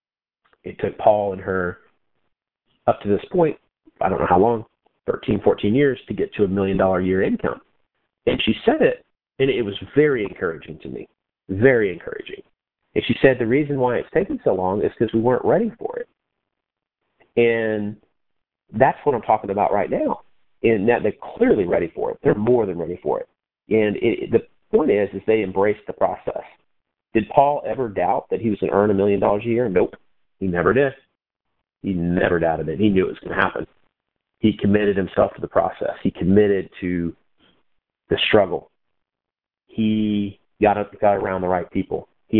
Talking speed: 190 wpm